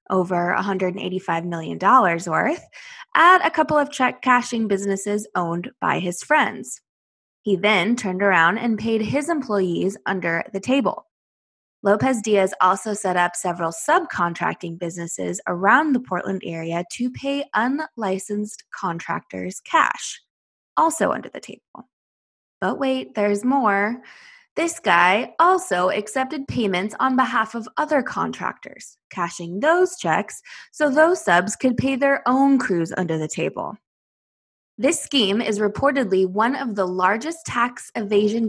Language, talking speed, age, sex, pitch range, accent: English, 130 wpm, 20-39, female, 185-260 Hz, American